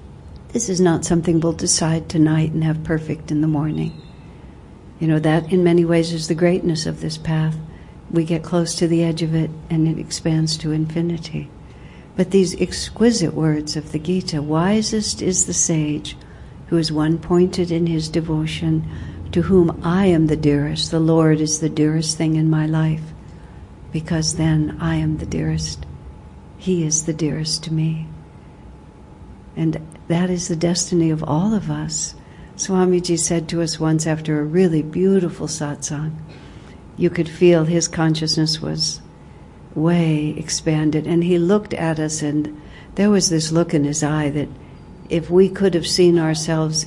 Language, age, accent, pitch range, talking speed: English, 60-79, American, 155-170 Hz, 165 wpm